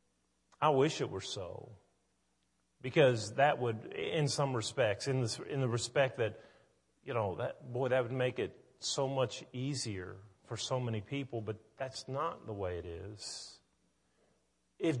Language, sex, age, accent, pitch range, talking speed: English, male, 40-59, American, 105-130 Hz, 150 wpm